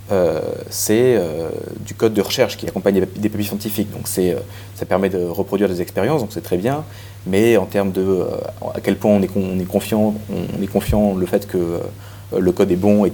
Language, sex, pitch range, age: French, male, 95-105 Hz, 30-49